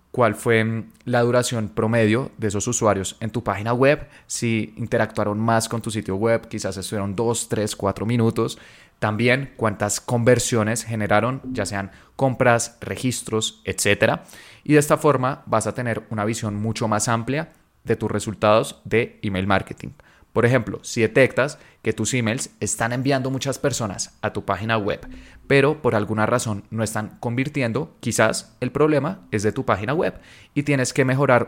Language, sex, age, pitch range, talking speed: Spanish, male, 20-39, 105-120 Hz, 165 wpm